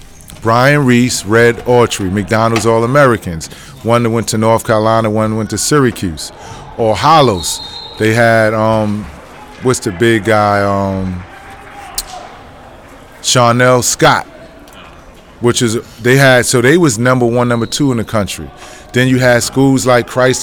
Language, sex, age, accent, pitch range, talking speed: English, male, 30-49, American, 110-125 Hz, 145 wpm